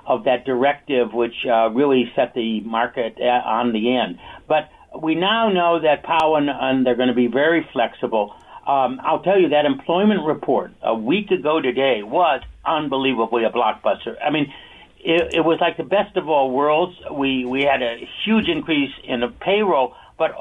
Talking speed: 180 wpm